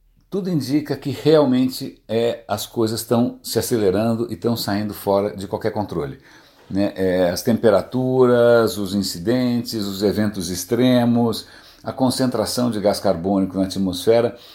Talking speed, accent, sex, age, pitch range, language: 130 wpm, Brazilian, male, 60-79, 100-125 Hz, Portuguese